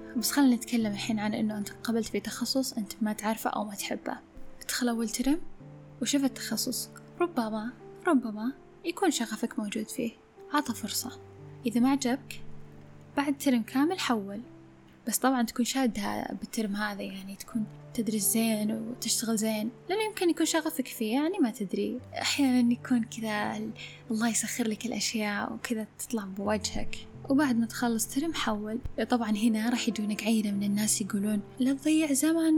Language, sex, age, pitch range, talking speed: Arabic, female, 10-29, 215-260 Hz, 150 wpm